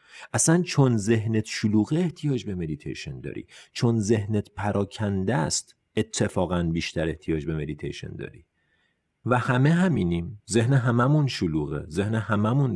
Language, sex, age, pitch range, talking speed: Persian, male, 40-59, 90-135 Hz, 120 wpm